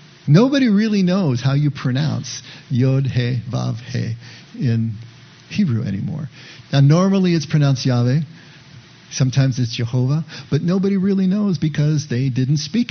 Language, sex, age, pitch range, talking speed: English, male, 50-69, 125-155 Hz, 120 wpm